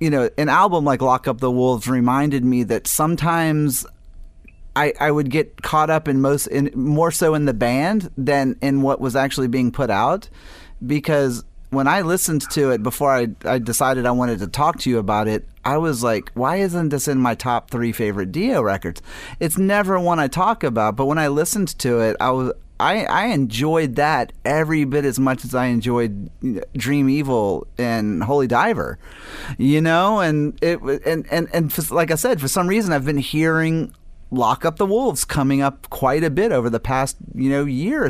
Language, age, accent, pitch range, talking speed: English, 30-49, American, 120-155 Hz, 205 wpm